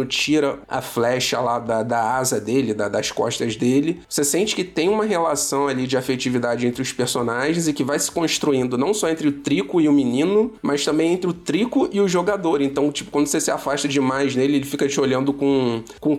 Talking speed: 215 wpm